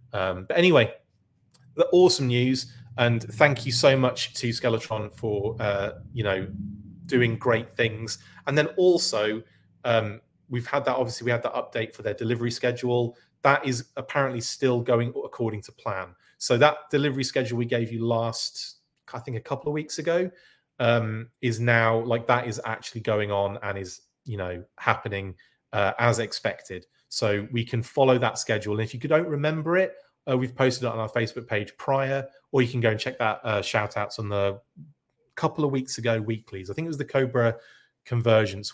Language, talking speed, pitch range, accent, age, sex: English, 185 wpm, 105-130 Hz, British, 30-49, male